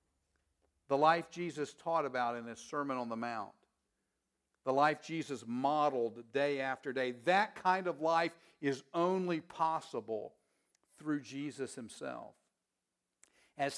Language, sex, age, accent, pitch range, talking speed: English, male, 50-69, American, 120-165 Hz, 125 wpm